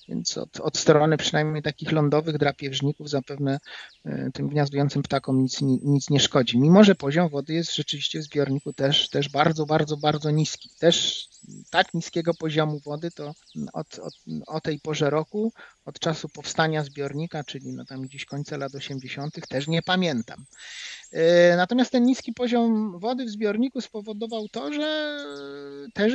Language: Polish